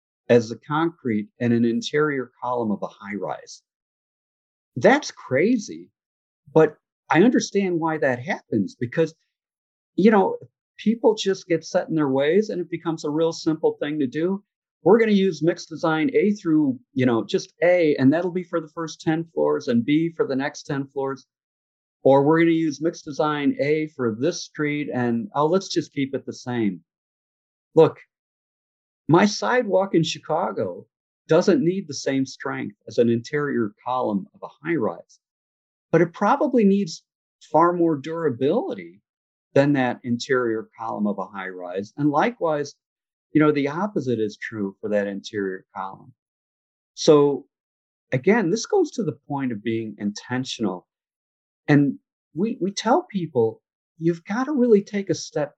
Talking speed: 160 wpm